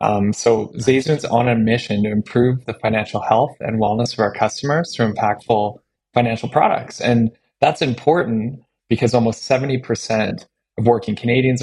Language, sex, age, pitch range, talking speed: English, male, 20-39, 105-120 Hz, 150 wpm